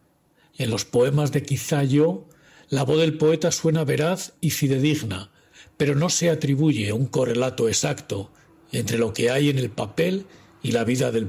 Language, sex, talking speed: Spanish, male, 170 wpm